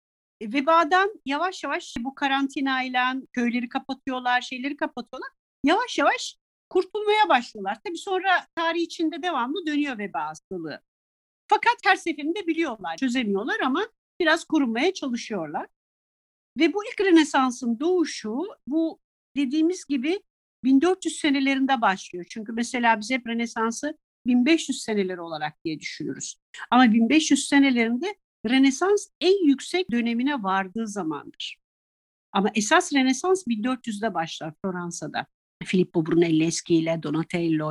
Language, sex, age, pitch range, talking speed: Turkish, female, 50-69, 205-315 Hz, 110 wpm